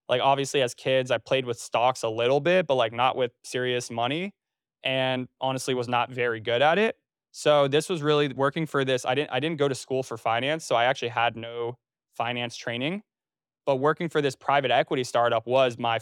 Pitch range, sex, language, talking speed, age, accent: 120-140 Hz, male, English, 215 wpm, 20-39, American